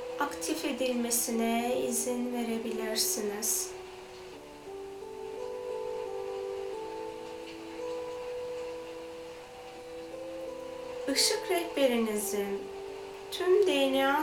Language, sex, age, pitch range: Turkish, female, 30-49, 210-320 Hz